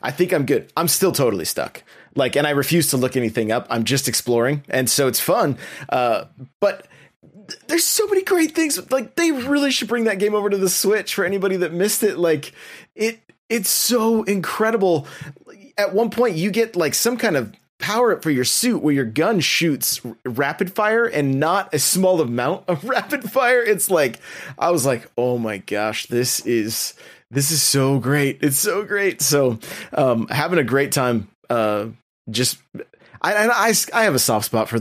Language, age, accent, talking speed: English, 30-49, American, 195 wpm